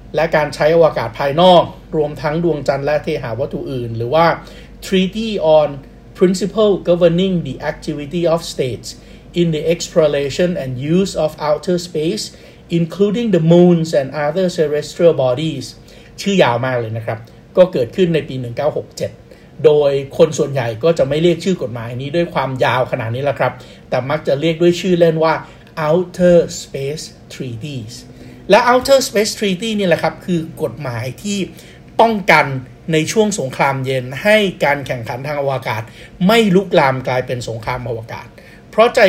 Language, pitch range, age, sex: Thai, 135-175 Hz, 60-79, male